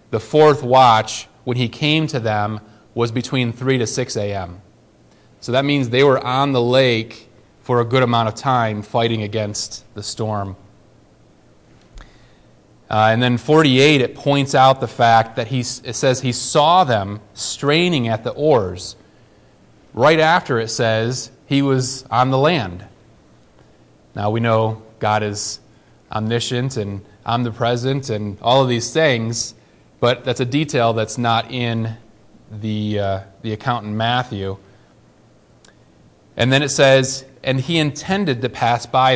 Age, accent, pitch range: 30-49, American, 110-130 Hz